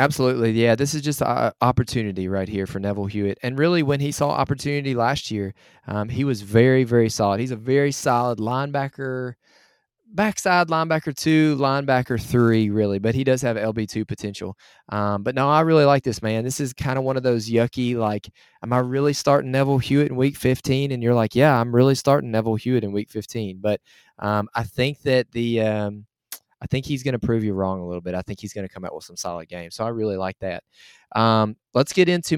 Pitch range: 110-140 Hz